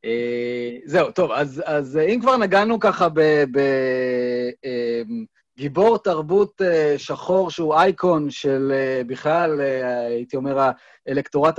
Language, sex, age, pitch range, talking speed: Hebrew, male, 30-49, 130-175 Hz, 95 wpm